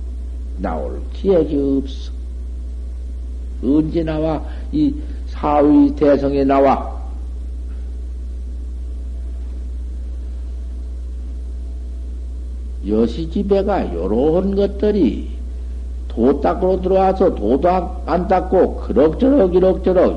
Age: 60-79